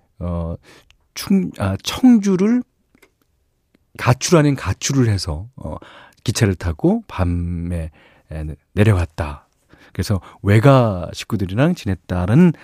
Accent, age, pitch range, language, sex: native, 40-59, 90-135 Hz, Korean, male